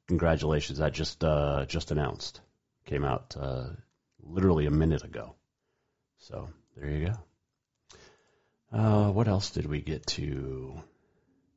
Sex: male